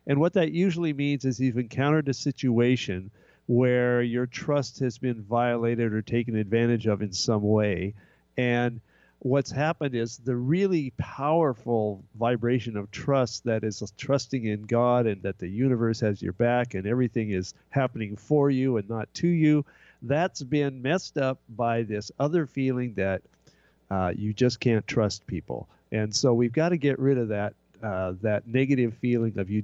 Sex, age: male, 50-69